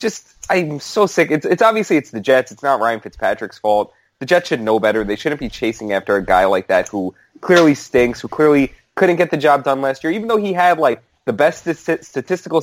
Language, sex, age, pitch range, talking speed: English, male, 20-39, 95-130 Hz, 235 wpm